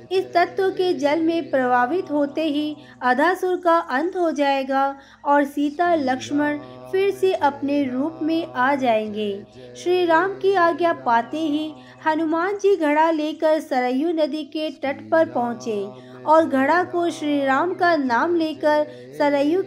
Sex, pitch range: female, 260-345 Hz